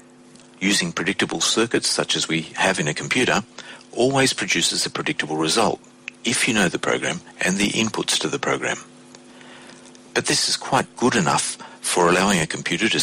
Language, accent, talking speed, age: English, Australian, 170 wpm, 50-69